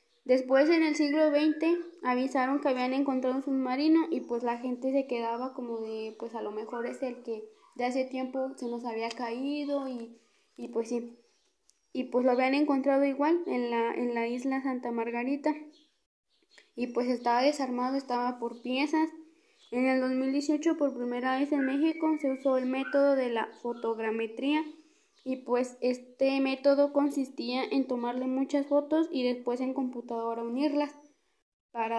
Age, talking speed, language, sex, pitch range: 20-39, 165 wpm, Spanish, female, 240-295 Hz